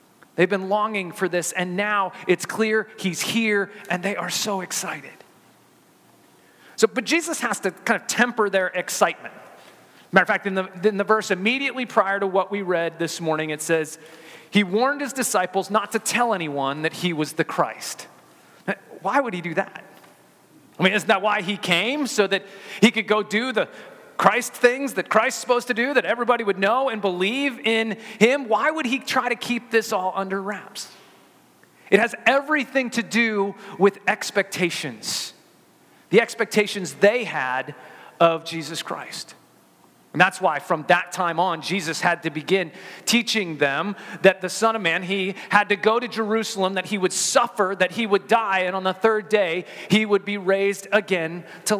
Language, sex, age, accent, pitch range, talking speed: English, male, 30-49, American, 180-225 Hz, 180 wpm